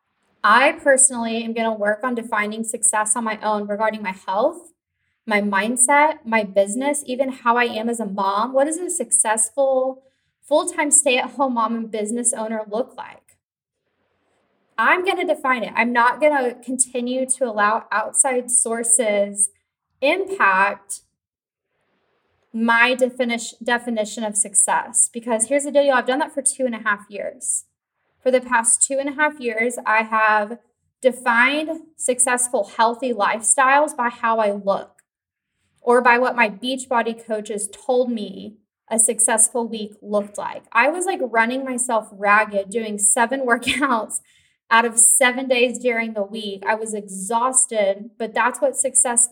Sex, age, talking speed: female, 10-29, 150 wpm